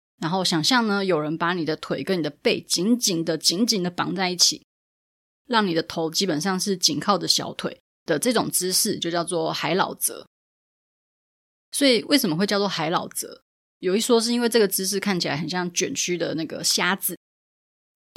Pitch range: 165-210 Hz